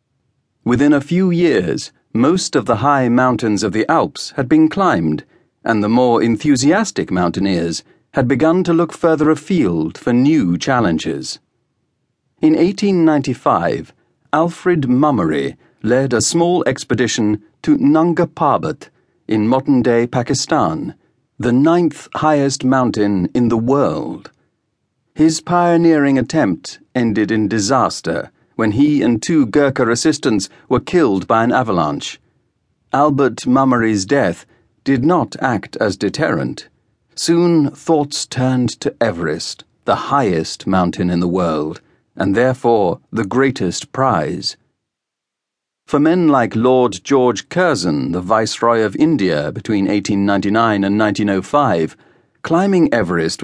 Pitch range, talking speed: 110-150 Hz, 120 wpm